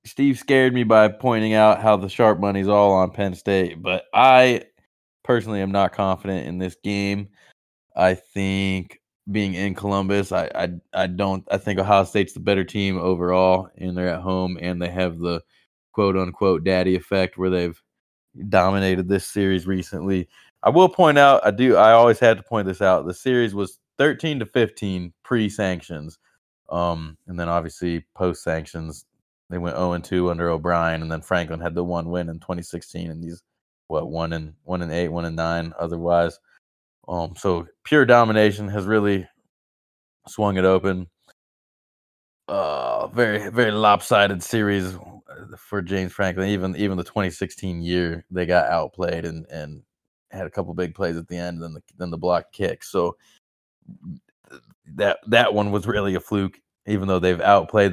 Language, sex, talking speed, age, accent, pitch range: English, male, 175 wpm, 20-39, American, 85-100 Hz